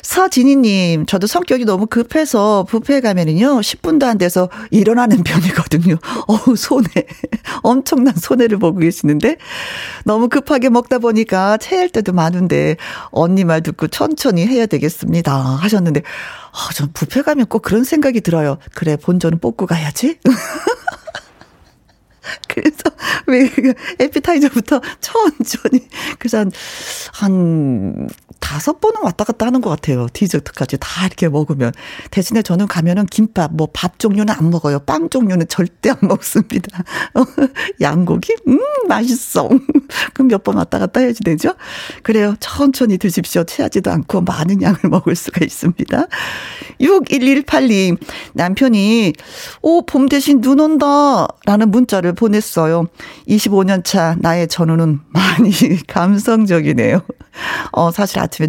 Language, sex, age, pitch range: Korean, female, 40-59, 175-255 Hz